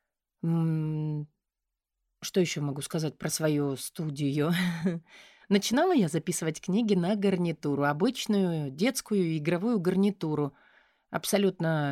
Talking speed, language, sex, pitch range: 90 wpm, Russian, female, 155-210 Hz